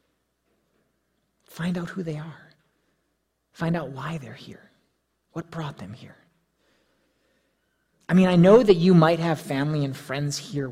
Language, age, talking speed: English, 30-49, 145 wpm